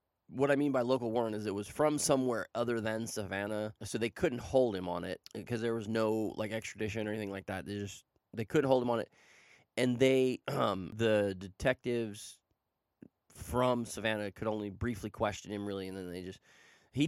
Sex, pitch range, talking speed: male, 100-120 Hz, 195 wpm